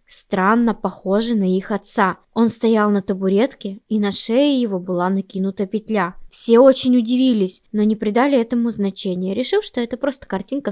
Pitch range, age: 195-235 Hz, 20-39